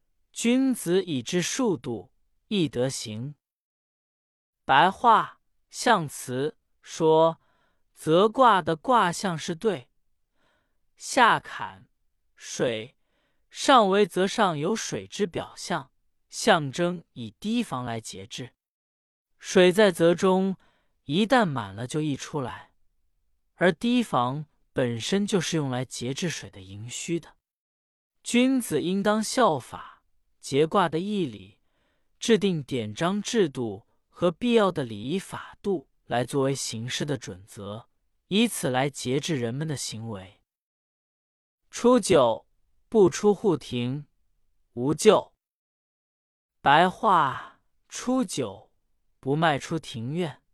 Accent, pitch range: native, 120-200 Hz